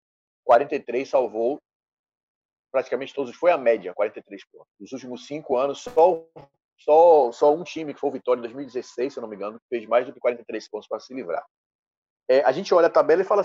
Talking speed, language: 205 wpm, Portuguese